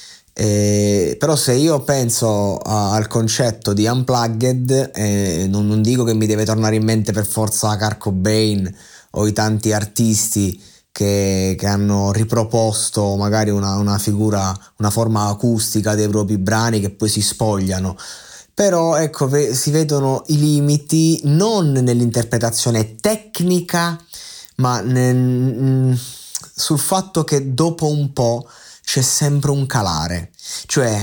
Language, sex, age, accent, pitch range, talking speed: Italian, male, 20-39, native, 105-140 Hz, 130 wpm